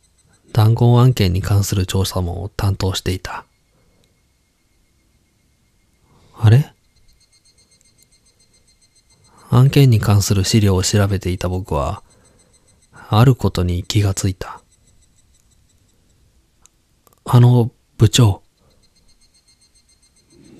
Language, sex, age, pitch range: Japanese, male, 20-39, 90-115 Hz